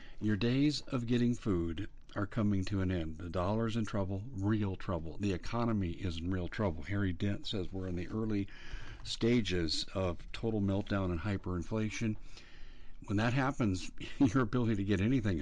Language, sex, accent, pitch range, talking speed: English, male, American, 90-110 Hz, 165 wpm